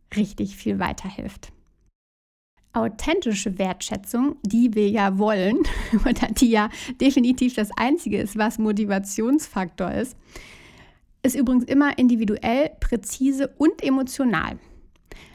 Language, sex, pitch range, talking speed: German, female, 210-255 Hz, 100 wpm